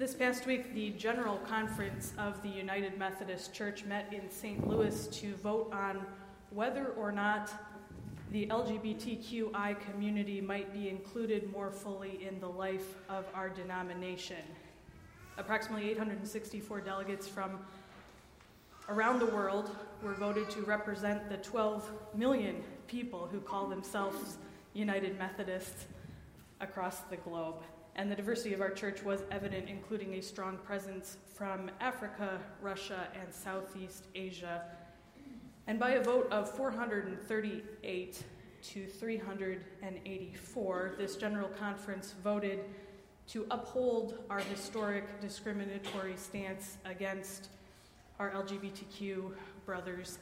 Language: English